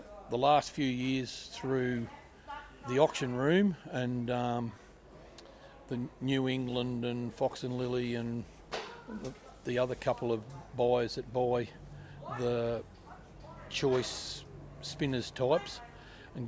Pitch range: 120-140 Hz